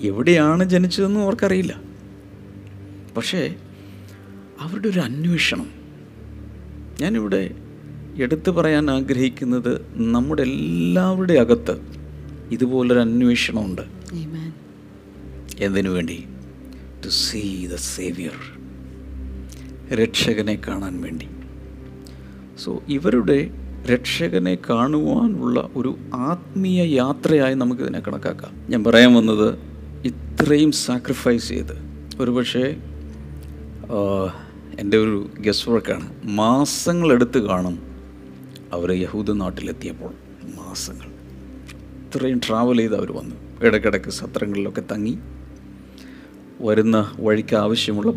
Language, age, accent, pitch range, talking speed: Malayalam, 50-69, native, 75-125 Hz, 75 wpm